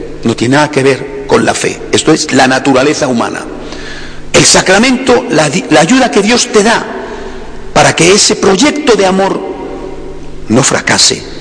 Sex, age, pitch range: male, 60-79, 140-225 Hz